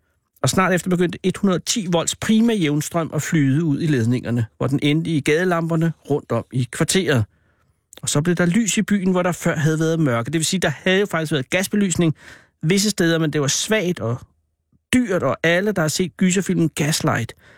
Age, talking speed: 60-79, 200 wpm